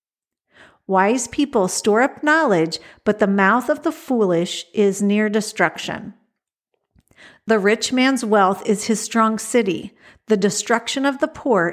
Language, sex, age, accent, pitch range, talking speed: English, female, 50-69, American, 195-245 Hz, 140 wpm